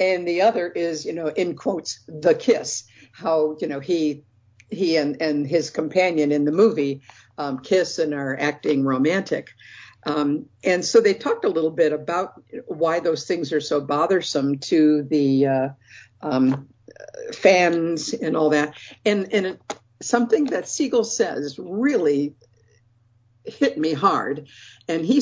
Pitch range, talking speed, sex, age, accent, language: 140-185 Hz, 150 wpm, female, 60-79, American, English